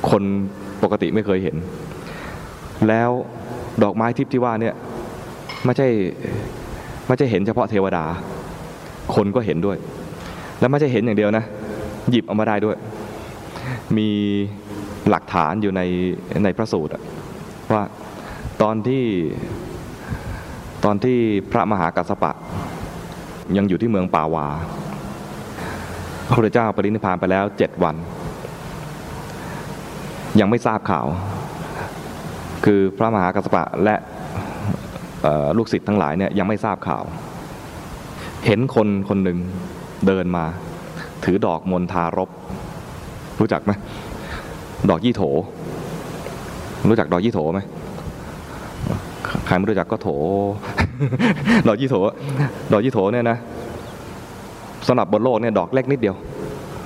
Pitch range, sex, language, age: 95-115 Hz, male, English, 20-39